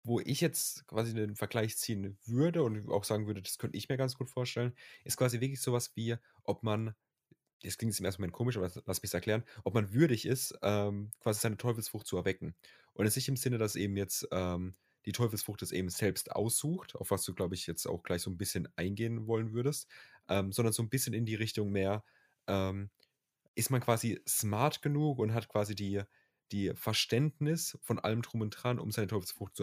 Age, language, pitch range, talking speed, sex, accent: 30-49, German, 100-130 Hz, 220 wpm, male, German